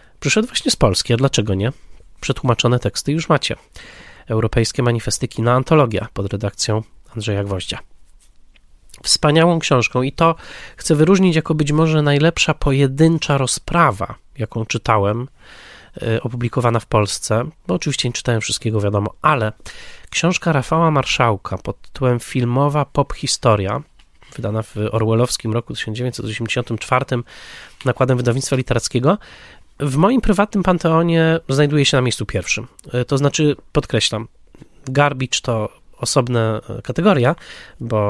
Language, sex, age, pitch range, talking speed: Polish, male, 20-39, 110-140 Hz, 120 wpm